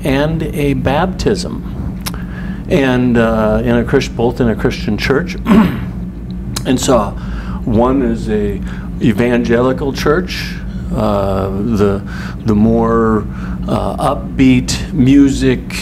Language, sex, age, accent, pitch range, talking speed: English, male, 50-69, American, 105-145 Hz, 100 wpm